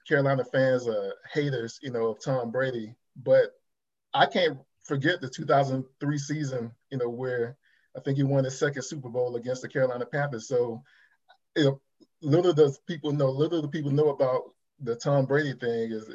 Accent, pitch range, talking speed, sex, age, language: American, 120-150 Hz, 180 wpm, male, 20-39, English